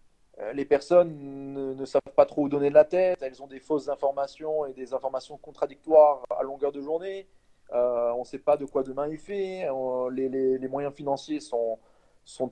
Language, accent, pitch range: French, French, 135-195 Hz